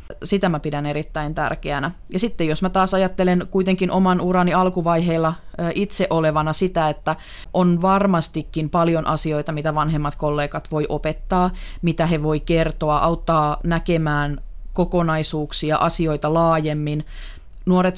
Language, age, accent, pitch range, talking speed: Finnish, 30-49, native, 155-185 Hz, 125 wpm